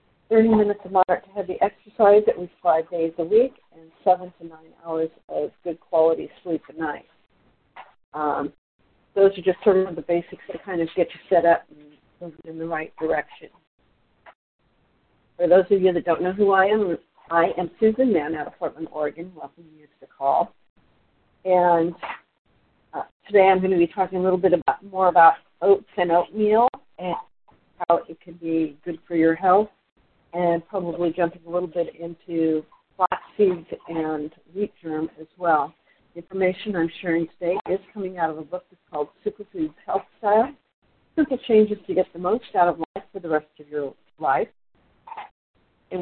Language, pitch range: English, 165-195 Hz